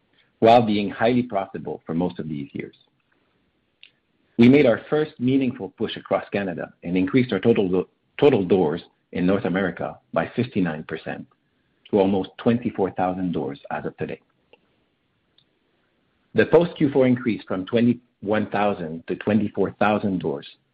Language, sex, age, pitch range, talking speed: English, male, 50-69, 90-120 Hz, 125 wpm